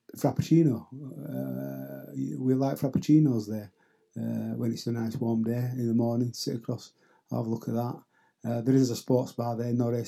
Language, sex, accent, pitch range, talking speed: English, male, British, 115-130 Hz, 185 wpm